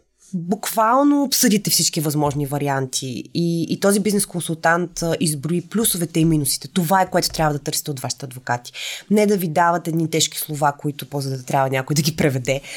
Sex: female